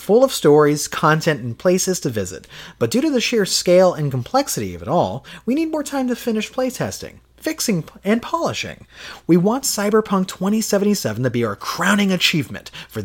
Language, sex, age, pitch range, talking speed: English, male, 30-49, 120-205 Hz, 180 wpm